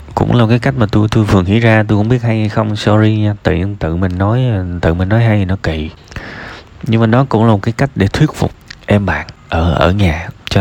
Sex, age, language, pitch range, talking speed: male, 20-39, Vietnamese, 90-120 Hz, 260 wpm